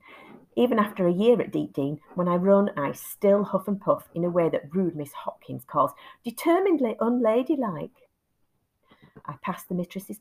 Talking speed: 170 wpm